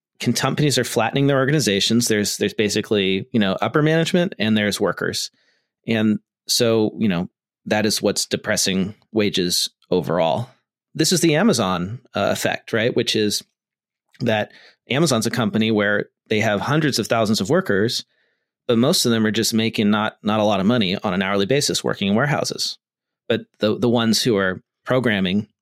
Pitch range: 100-120 Hz